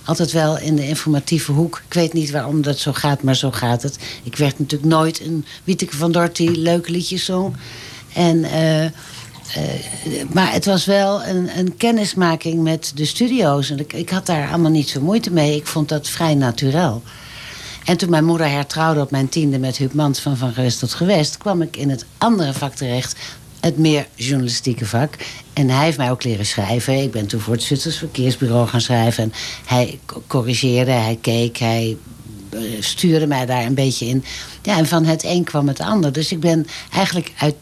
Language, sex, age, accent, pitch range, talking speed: Dutch, female, 60-79, Dutch, 125-160 Hz, 195 wpm